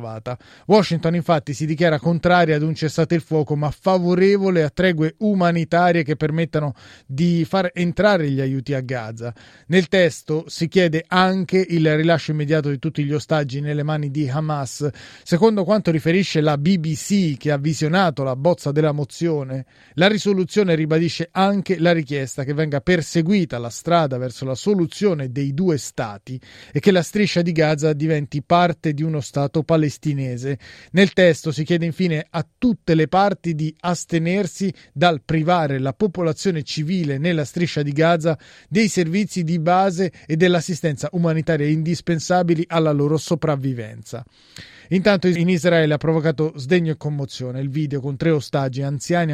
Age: 30-49